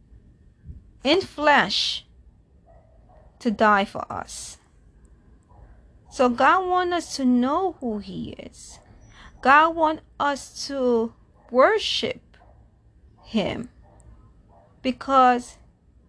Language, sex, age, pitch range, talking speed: English, female, 30-49, 230-280 Hz, 80 wpm